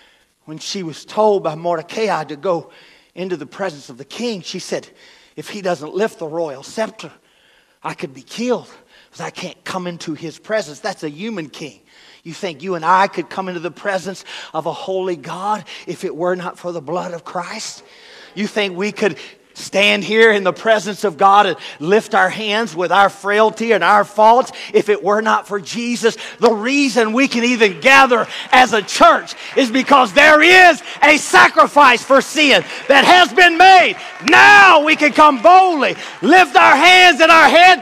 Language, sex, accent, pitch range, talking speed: English, male, American, 185-295 Hz, 190 wpm